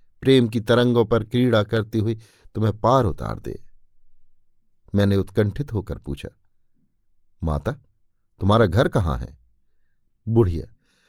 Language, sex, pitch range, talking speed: Hindi, male, 100-130 Hz, 120 wpm